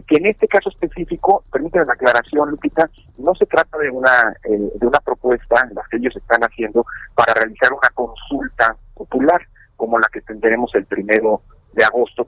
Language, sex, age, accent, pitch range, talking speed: Spanish, male, 50-69, Mexican, 115-180 Hz, 180 wpm